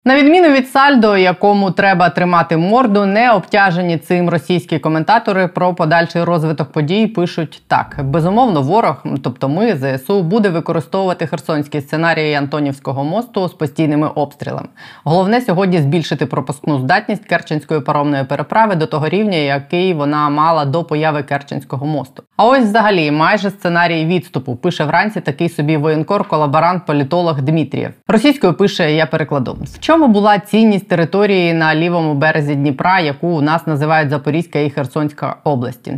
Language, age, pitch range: Ukrainian, 20-39, 150-190 Hz